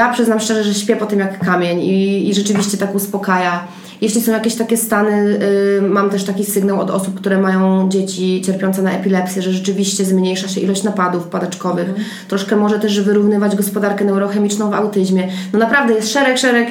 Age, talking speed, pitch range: 20-39, 185 wpm, 190-215 Hz